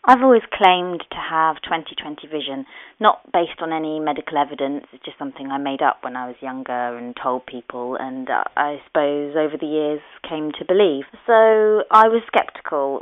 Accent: British